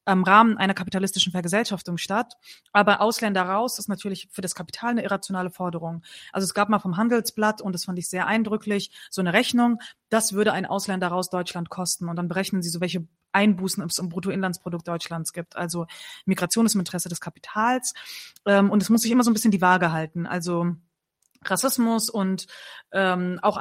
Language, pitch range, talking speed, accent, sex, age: German, 180-215 Hz, 185 wpm, German, female, 20-39